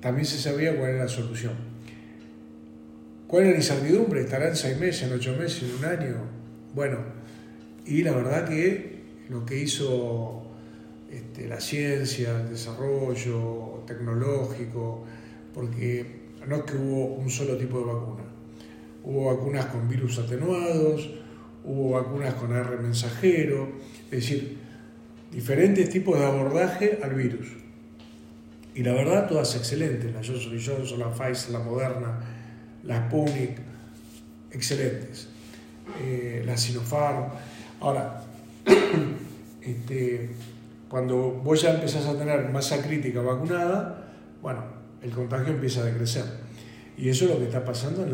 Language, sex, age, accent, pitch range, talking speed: Spanish, male, 40-59, Argentinian, 115-140 Hz, 130 wpm